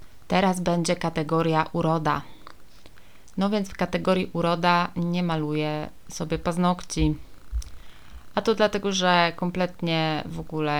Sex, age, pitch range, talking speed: female, 20-39, 150-170 Hz, 110 wpm